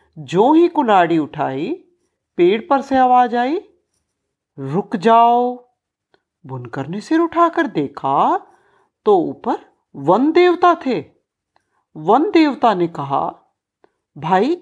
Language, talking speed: Hindi, 105 wpm